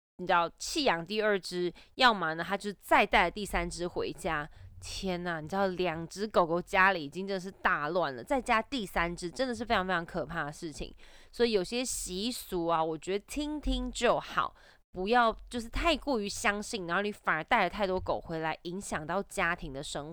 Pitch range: 170-215 Hz